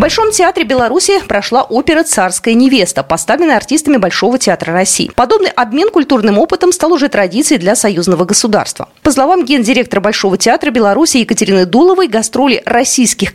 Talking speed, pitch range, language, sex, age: 150 wpm, 190-310 Hz, Russian, female, 30-49